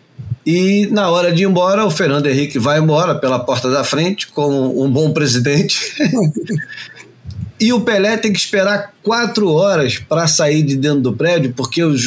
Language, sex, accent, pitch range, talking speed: Portuguese, male, Brazilian, 135-190 Hz, 175 wpm